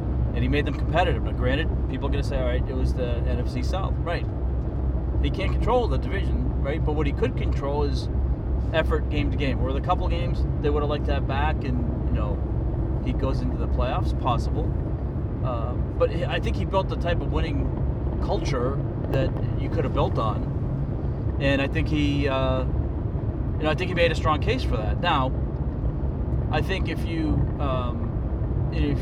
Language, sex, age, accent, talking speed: English, male, 40-59, American, 195 wpm